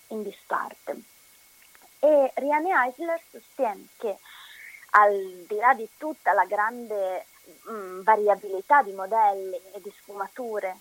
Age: 30-49